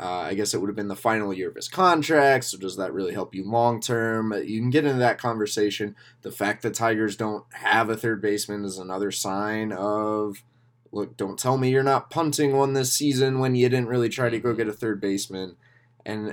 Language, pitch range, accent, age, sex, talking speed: English, 95-120 Hz, American, 20-39, male, 225 wpm